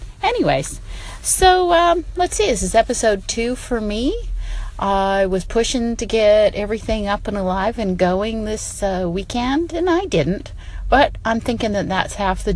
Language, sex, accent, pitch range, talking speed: English, female, American, 160-225 Hz, 170 wpm